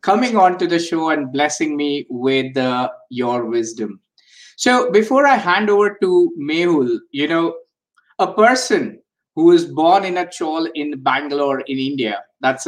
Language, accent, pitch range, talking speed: English, Indian, 145-220 Hz, 160 wpm